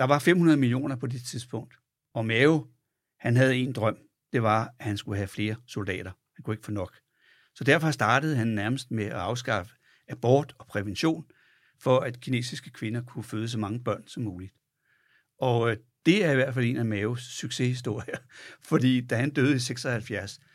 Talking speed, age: 185 wpm, 60-79